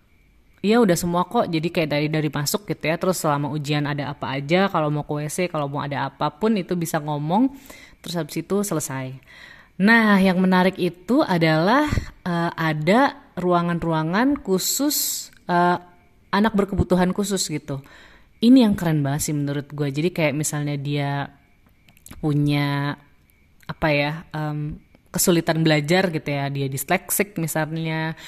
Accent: native